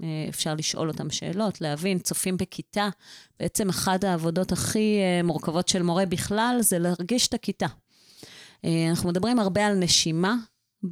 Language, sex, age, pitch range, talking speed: Hebrew, female, 30-49, 165-205 Hz, 130 wpm